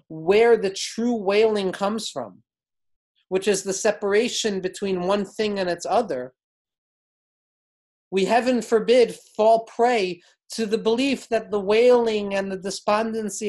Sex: male